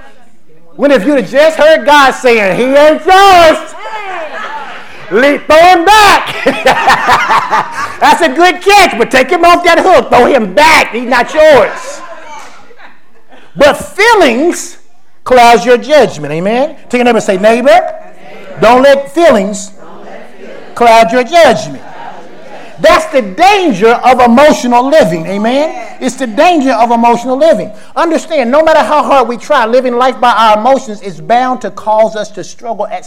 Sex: male